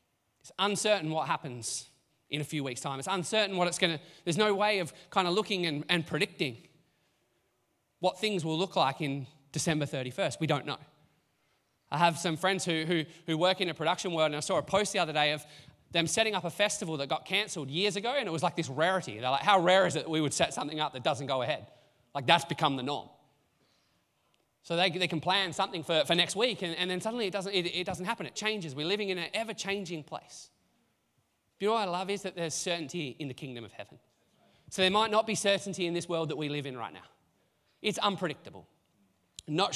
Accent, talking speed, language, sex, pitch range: Australian, 230 wpm, English, male, 145-190 Hz